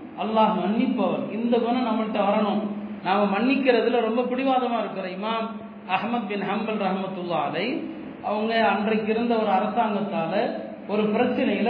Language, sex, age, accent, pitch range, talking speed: Tamil, male, 40-59, native, 205-250 Hz, 105 wpm